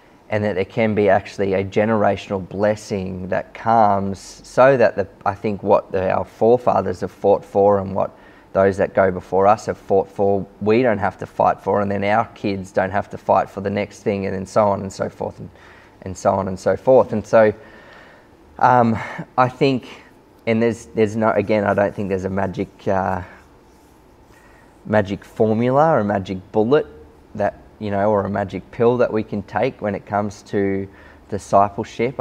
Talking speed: 190 wpm